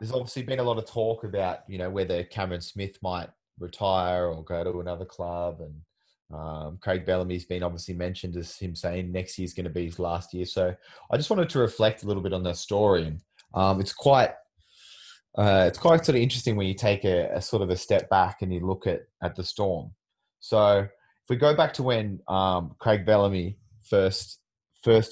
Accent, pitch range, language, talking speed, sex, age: Australian, 90-110 Hz, English, 215 wpm, male, 20-39